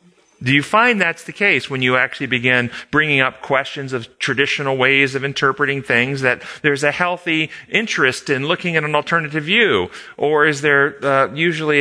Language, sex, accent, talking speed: English, male, American, 180 wpm